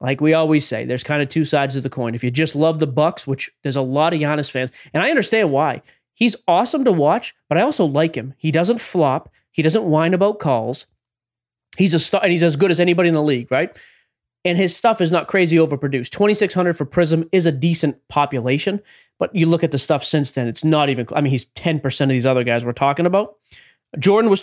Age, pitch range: 20-39, 135-195 Hz